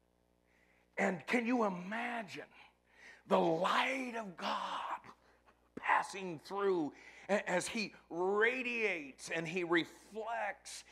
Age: 50-69